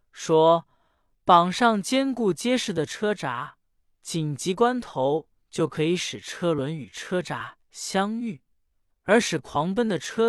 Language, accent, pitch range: Chinese, native, 150-210 Hz